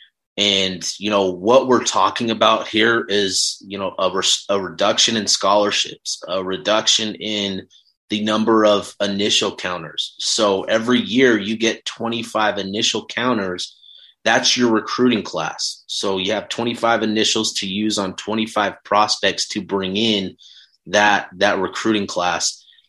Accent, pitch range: American, 100-110 Hz